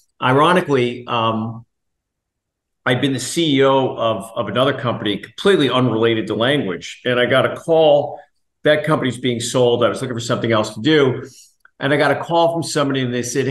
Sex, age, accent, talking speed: male, 50-69, American, 180 wpm